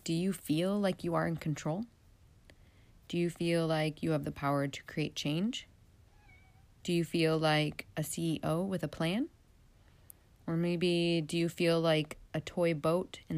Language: English